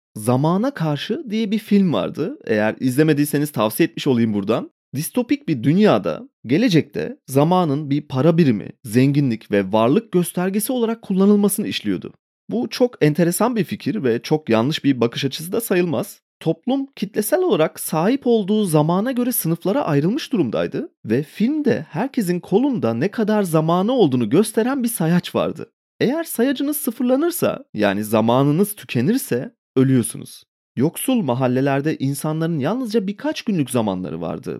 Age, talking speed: 30-49, 135 wpm